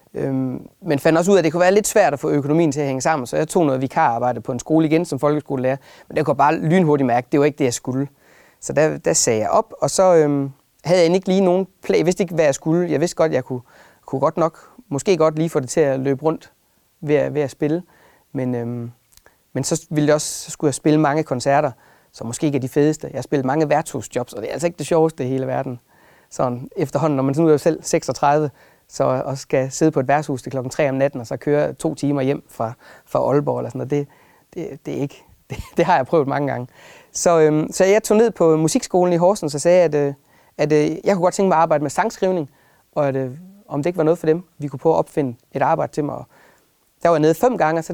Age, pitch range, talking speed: 30-49, 135-165 Hz, 270 wpm